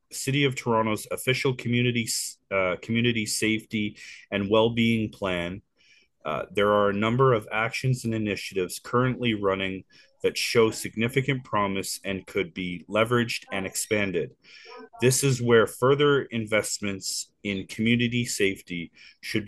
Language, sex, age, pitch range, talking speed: English, male, 30-49, 105-130 Hz, 125 wpm